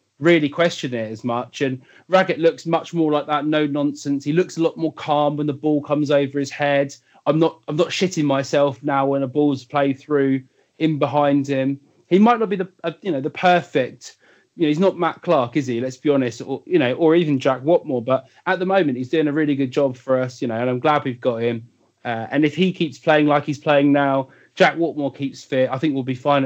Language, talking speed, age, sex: English, 245 wpm, 30-49, male